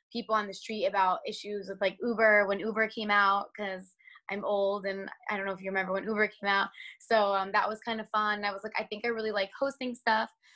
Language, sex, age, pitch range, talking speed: English, female, 20-39, 195-220 Hz, 250 wpm